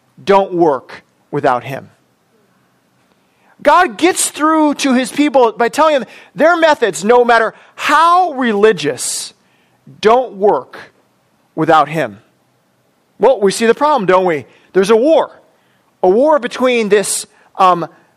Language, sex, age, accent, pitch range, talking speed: English, male, 40-59, American, 165-230 Hz, 125 wpm